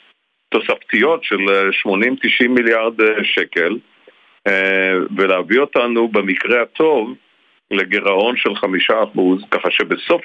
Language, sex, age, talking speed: Hebrew, male, 50-69, 80 wpm